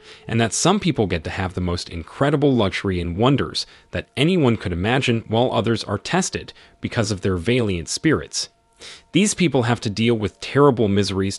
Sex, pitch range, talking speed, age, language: male, 95-130 Hz, 180 wpm, 30-49, English